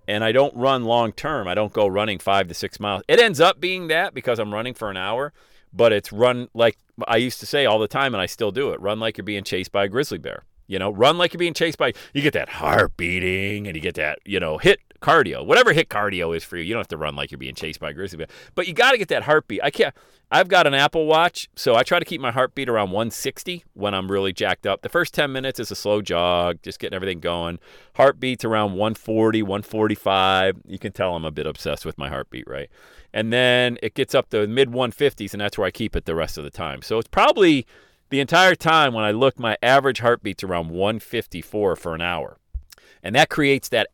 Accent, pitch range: American, 95-135 Hz